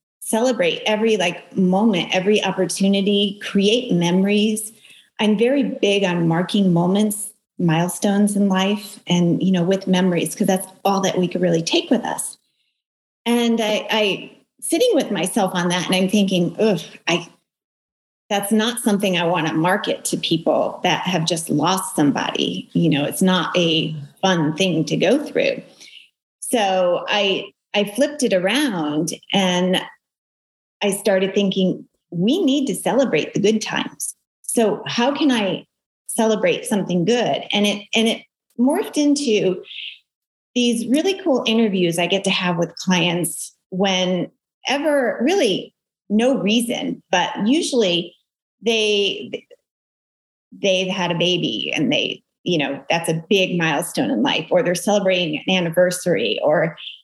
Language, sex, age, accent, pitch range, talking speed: English, female, 30-49, American, 180-225 Hz, 145 wpm